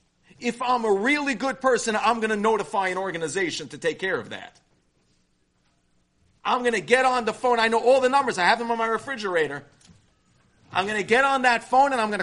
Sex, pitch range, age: male, 195-255 Hz, 40-59